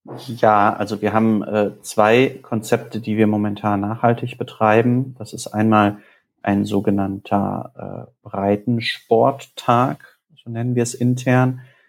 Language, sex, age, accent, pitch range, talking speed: German, male, 30-49, German, 105-120 Hz, 120 wpm